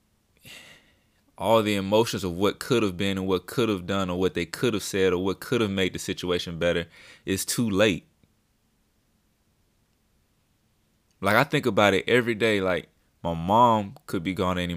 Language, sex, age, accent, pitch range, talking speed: English, male, 20-39, American, 90-110 Hz, 185 wpm